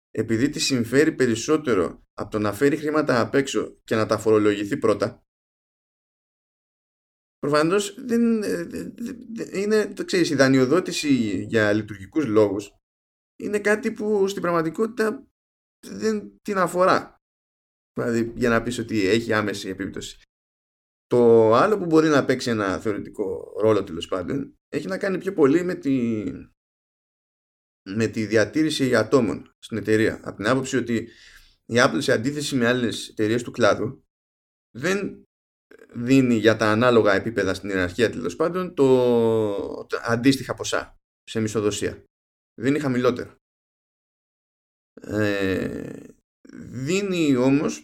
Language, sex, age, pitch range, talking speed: Greek, male, 20-39, 105-160 Hz, 125 wpm